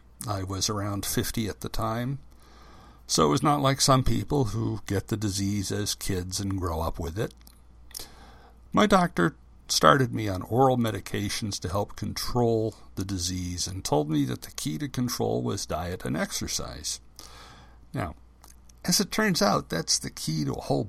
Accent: American